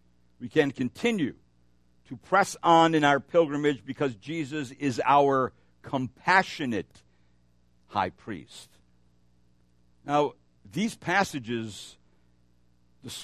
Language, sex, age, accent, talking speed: English, male, 60-79, American, 90 wpm